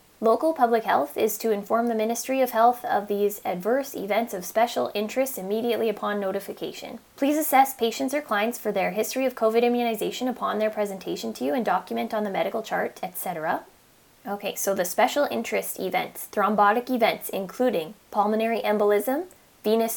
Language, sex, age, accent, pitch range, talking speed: English, female, 10-29, American, 195-230 Hz, 165 wpm